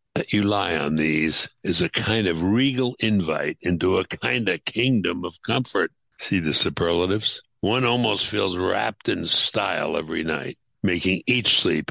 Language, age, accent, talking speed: English, 60-79, American, 160 wpm